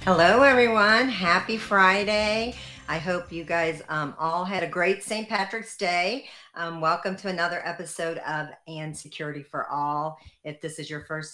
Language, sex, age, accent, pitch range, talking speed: English, female, 50-69, American, 145-180 Hz, 165 wpm